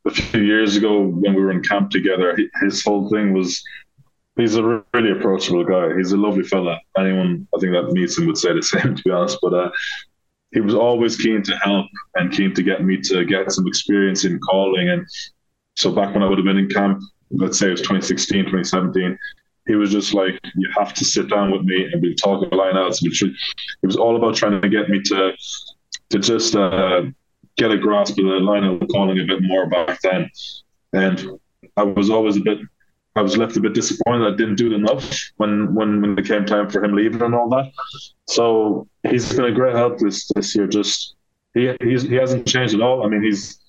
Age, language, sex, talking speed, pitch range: 20-39, English, male, 225 wpm, 95-115 Hz